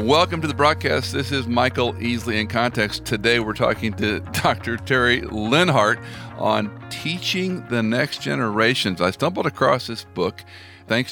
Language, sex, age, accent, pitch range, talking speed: English, male, 50-69, American, 100-130 Hz, 150 wpm